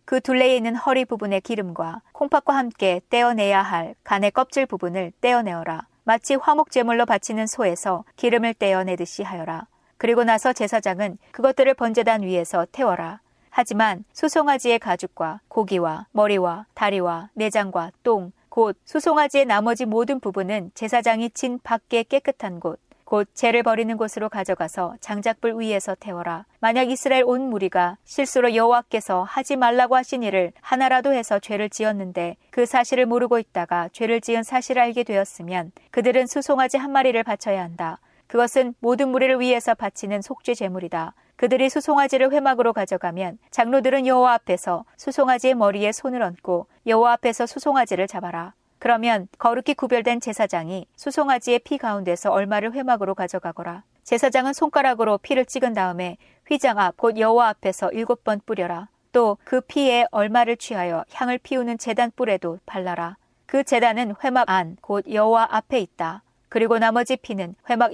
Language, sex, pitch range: Korean, female, 195-255 Hz